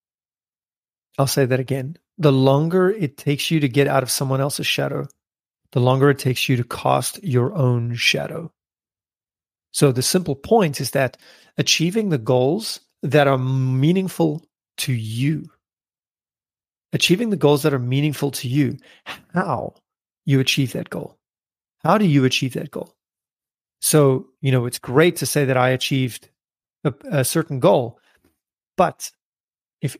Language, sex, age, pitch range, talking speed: English, male, 30-49, 130-155 Hz, 150 wpm